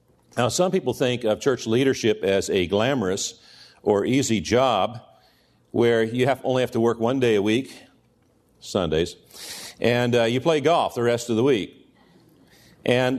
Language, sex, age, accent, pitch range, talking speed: English, male, 50-69, American, 105-135 Hz, 160 wpm